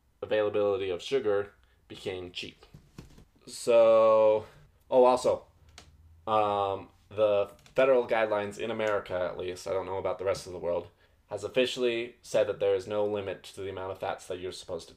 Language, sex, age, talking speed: English, male, 20-39, 170 wpm